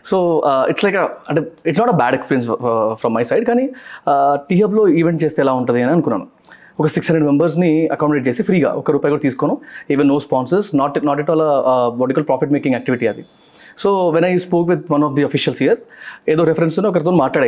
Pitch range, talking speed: 140-185 Hz, 215 wpm